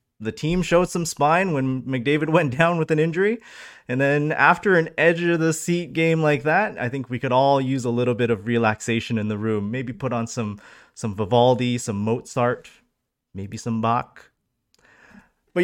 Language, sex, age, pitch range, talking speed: English, male, 20-39, 120-195 Hz, 175 wpm